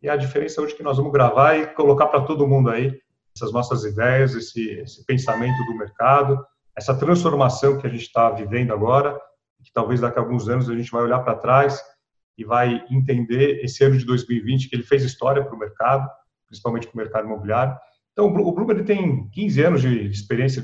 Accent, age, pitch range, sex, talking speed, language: Brazilian, 40-59, 115-140 Hz, male, 205 wpm, Portuguese